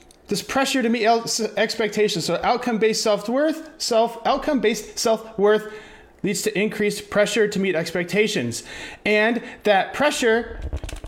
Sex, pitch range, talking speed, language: male, 155-220 Hz, 115 wpm, English